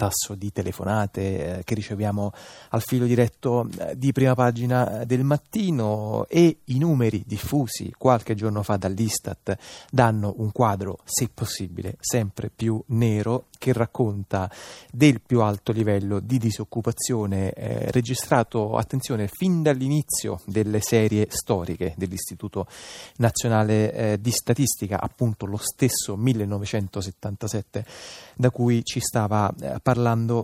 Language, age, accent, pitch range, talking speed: Italian, 30-49, native, 105-125 Hz, 120 wpm